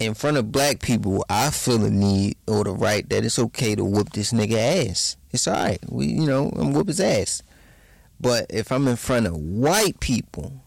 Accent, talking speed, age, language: American, 215 wpm, 20-39, English